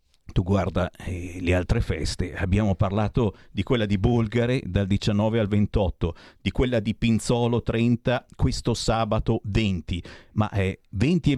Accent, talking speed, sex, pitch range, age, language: native, 155 wpm, male, 95-130 Hz, 50-69, Italian